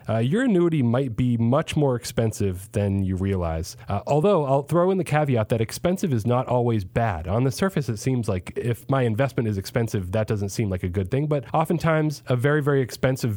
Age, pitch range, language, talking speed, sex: 30-49, 110-135 Hz, English, 215 wpm, male